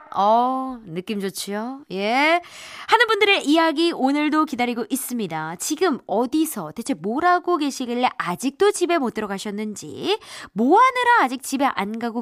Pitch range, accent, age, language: 215-340 Hz, native, 20-39, Korean